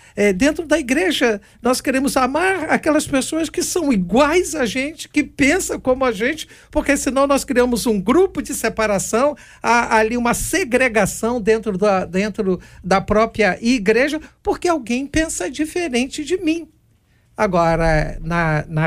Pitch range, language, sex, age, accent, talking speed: 190-290 Hz, Portuguese, male, 60-79, Brazilian, 135 wpm